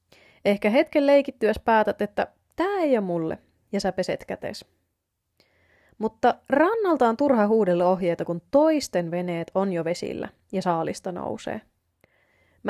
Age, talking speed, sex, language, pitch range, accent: 20-39, 130 wpm, female, Finnish, 170-255 Hz, native